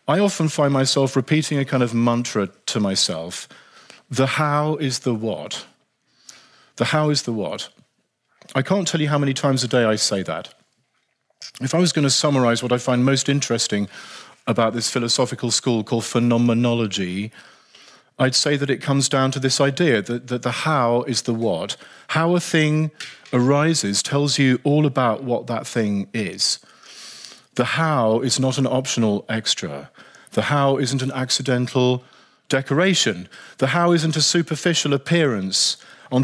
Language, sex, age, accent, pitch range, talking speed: Dutch, male, 40-59, British, 120-150 Hz, 160 wpm